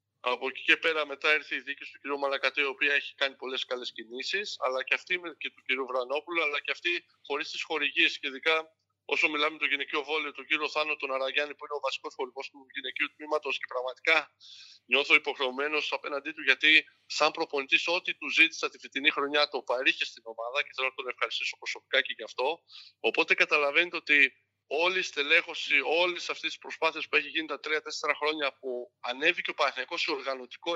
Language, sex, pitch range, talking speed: Greek, male, 140-175 Hz, 195 wpm